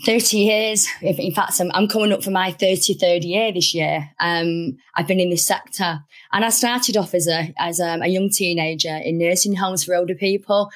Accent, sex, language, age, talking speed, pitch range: British, female, English, 20-39, 200 wpm, 165-195 Hz